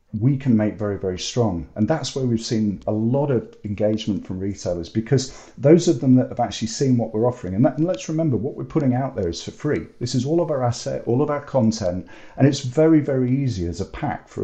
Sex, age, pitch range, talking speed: male, 40-59, 100-125 Hz, 250 wpm